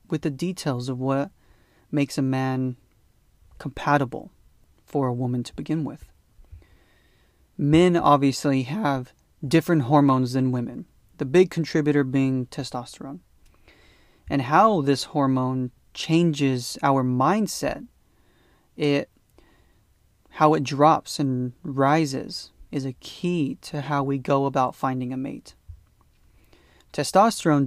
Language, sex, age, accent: English, male, 30-49, American